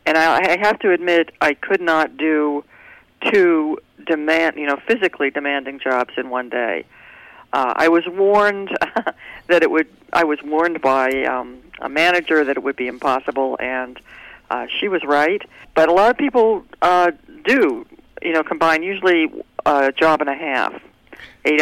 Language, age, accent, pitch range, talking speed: English, 50-69, American, 145-190 Hz, 165 wpm